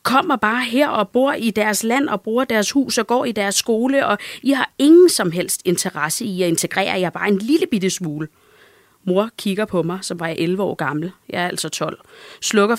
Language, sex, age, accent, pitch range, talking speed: Danish, female, 30-49, native, 175-245 Hz, 220 wpm